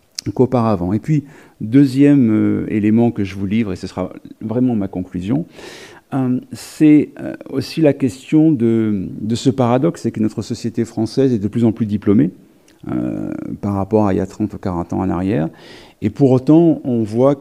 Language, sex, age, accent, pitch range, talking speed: French, male, 50-69, French, 105-130 Hz, 190 wpm